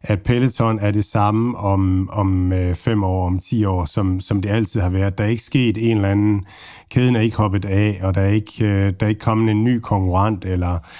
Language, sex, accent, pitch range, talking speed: Danish, male, native, 100-120 Hz, 225 wpm